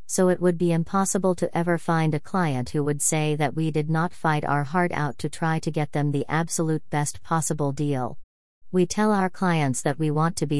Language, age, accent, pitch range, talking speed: English, 40-59, American, 145-170 Hz, 225 wpm